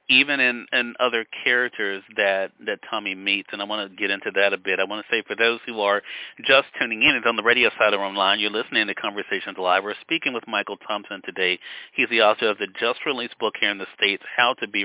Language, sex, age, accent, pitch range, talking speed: English, male, 40-59, American, 110-160 Hz, 245 wpm